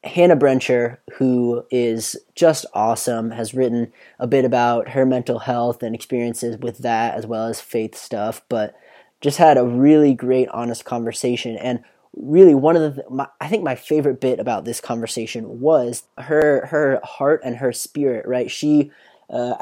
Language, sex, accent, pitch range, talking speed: English, male, American, 120-130 Hz, 170 wpm